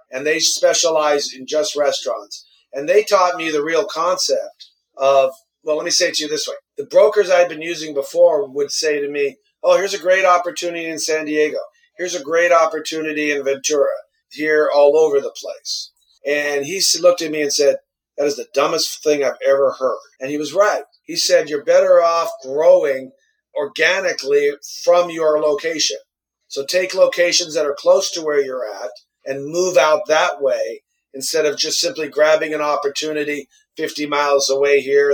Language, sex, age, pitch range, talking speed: English, male, 40-59, 145-195 Hz, 185 wpm